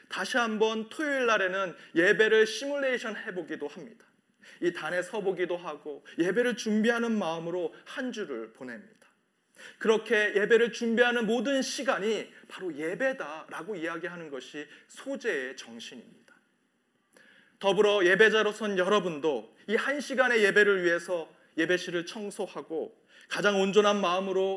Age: 30-49